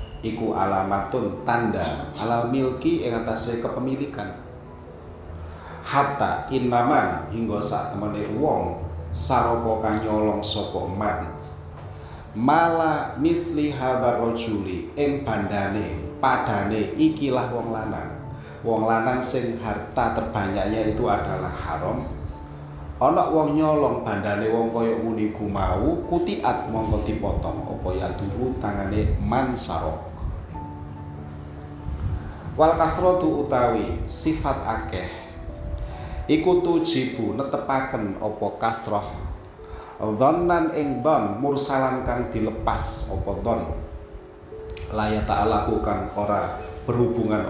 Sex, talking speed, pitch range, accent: male, 90 wpm, 90-120 Hz, native